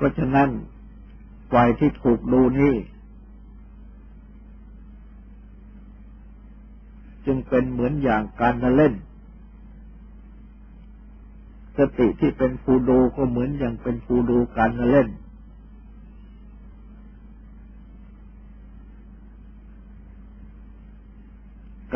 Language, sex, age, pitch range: Thai, male, 60-79, 120-150 Hz